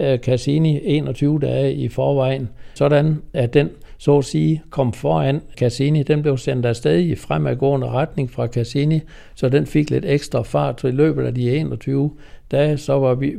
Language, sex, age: Danish, male, 60-79